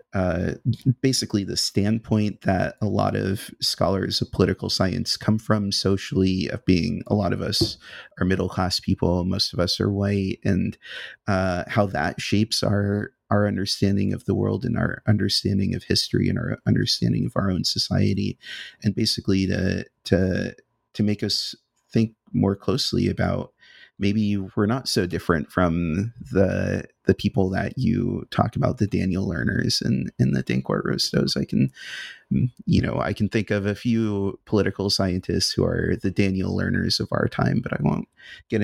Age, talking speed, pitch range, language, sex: 30-49, 170 wpm, 95-110 Hz, English, male